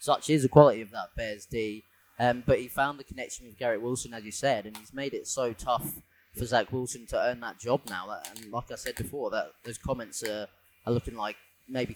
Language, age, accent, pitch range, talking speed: English, 20-39, British, 110-135 Hz, 235 wpm